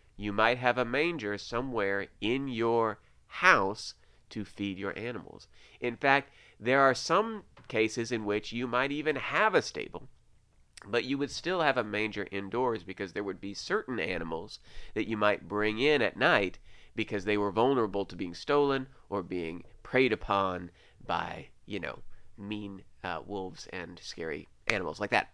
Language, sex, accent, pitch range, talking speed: English, male, American, 100-125 Hz, 165 wpm